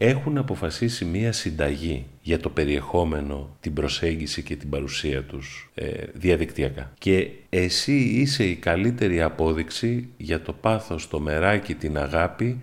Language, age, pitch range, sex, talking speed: Greek, 40-59, 80-115 Hz, male, 135 wpm